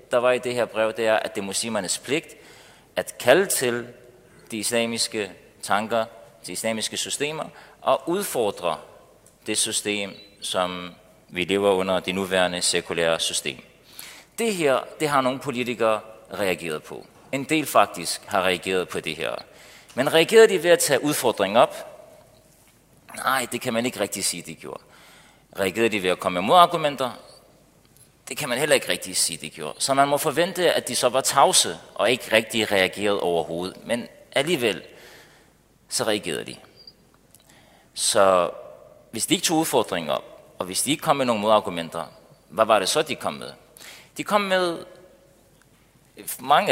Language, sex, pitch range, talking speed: Danish, male, 100-145 Hz, 165 wpm